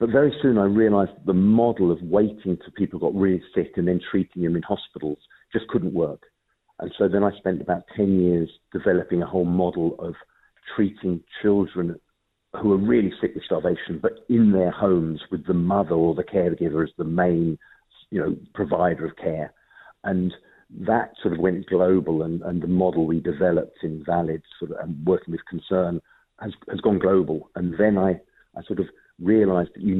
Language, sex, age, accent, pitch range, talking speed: English, male, 50-69, British, 85-100 Hz, 190 wpm